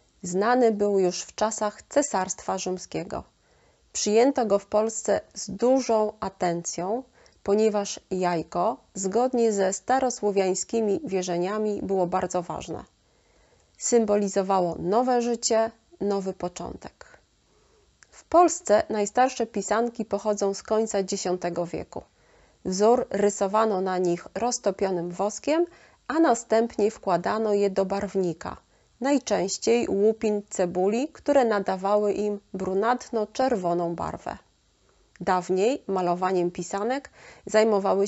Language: Polish